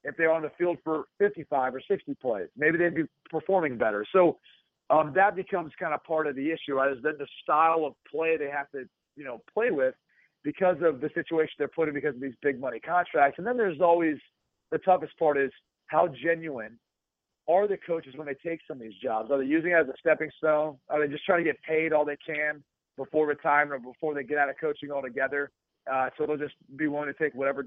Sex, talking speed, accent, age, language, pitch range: male, 235 wpm, American, 40-59, English, 140-170 Hz